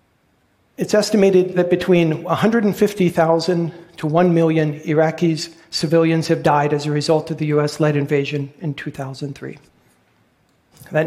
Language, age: Arabic, 50-69